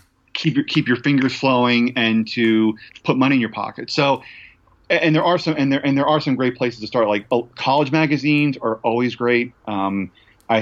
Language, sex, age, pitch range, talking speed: English, male, 30-49, 110-135 Hz, 215 wpm